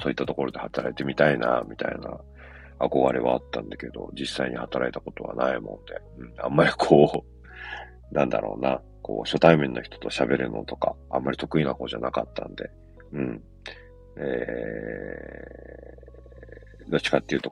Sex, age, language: male, 40-59, Japanese